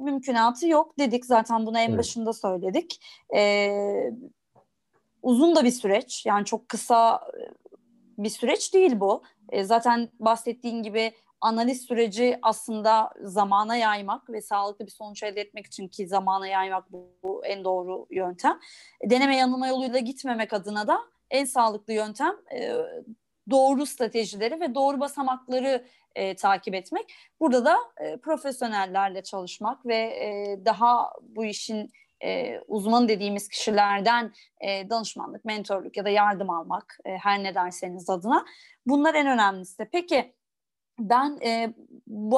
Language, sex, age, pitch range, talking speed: Turkish, female, 30-49, 210-260 Hz, 135 wpm